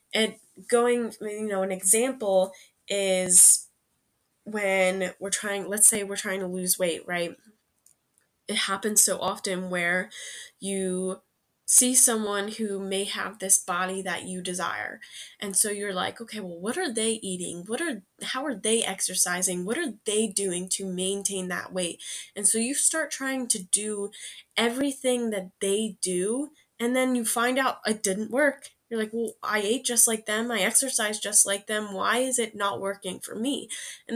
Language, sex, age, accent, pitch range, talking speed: English, female, 10-29, American, 185-230 Hz, 170 wpm